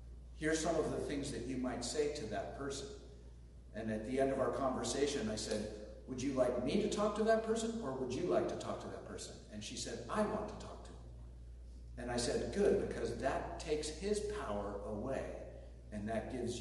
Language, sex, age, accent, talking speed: English, male, 50-69, American, 220 wpm